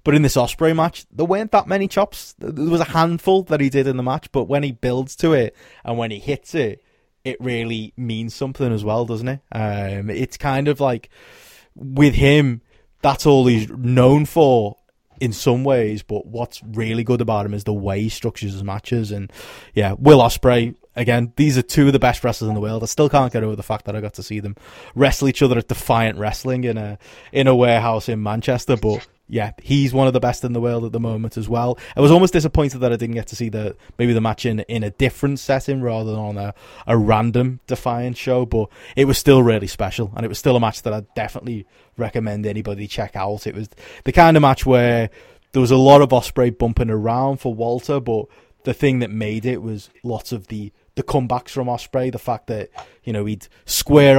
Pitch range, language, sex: 110-135 Hz, English, male